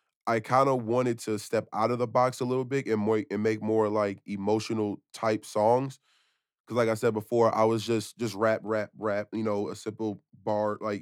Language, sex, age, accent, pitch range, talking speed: English, male, 20-39, American, 105-115 Hz, 220 wpm